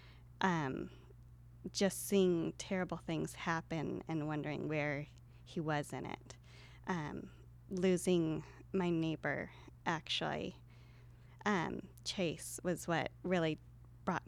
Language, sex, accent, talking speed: English, female, American, 100 wpm